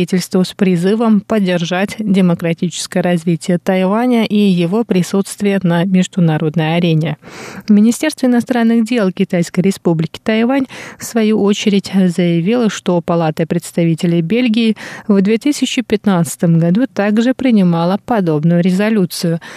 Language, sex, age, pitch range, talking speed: Russian, female, 20-39, 180-210 Hz, 100 wpm